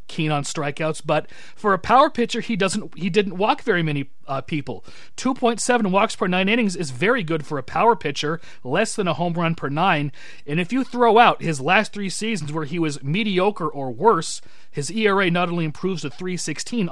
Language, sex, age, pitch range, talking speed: English, male, 30-49, 150-195 Hz, 215 wpm